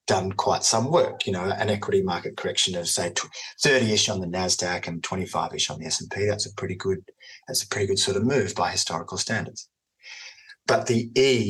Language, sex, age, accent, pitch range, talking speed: English, male, 30-49, Australian, 105-145 Hz, 210 wpm